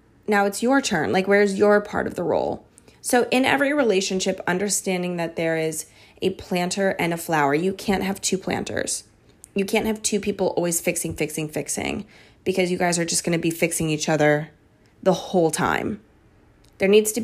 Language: English